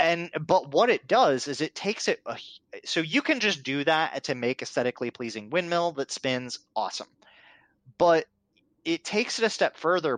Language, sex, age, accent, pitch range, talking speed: English, male, 30-49, American, 115-150 Hz, 185 wpm